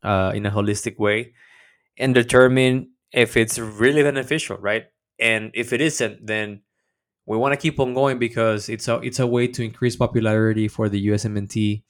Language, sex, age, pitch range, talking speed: English, male, 20-39, 110-130 Hz, 175 wpm